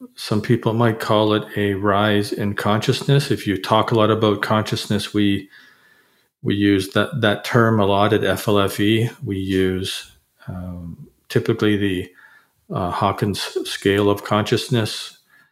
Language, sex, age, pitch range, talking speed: English, male, 40-59, 100-110 Hz, 140 wpm